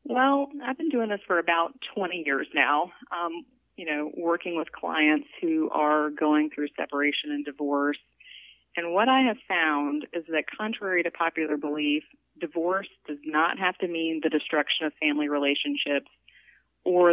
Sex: female